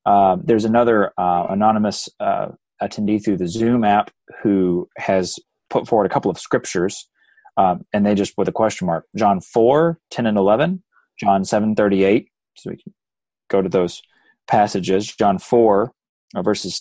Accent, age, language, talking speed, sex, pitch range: American, 30-49, English, 155 wpm, male, 95-115 Hz